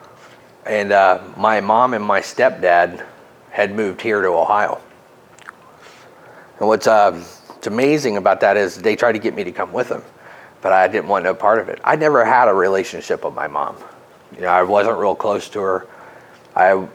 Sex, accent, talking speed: male, American, 190 wpm